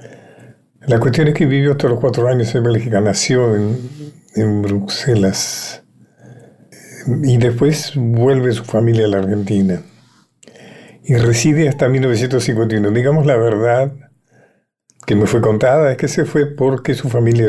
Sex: male